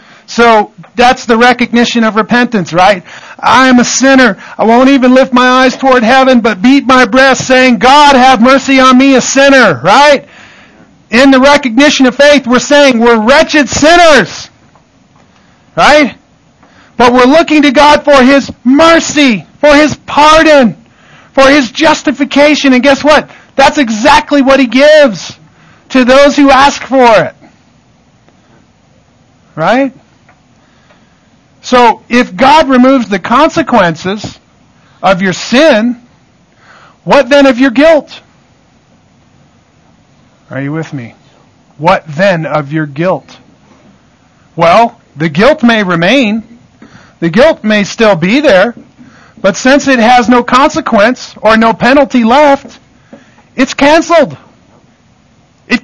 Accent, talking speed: American, 130 wpm